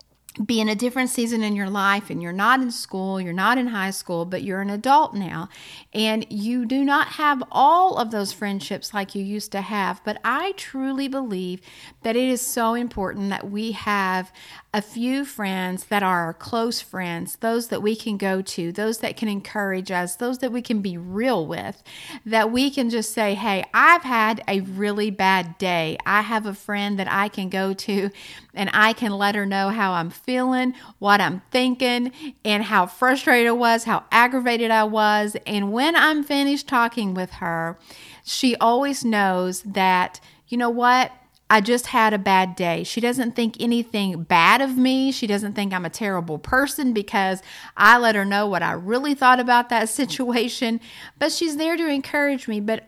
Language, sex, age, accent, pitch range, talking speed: English, female, 50-69, American, 195-250 Hz, 190 wpm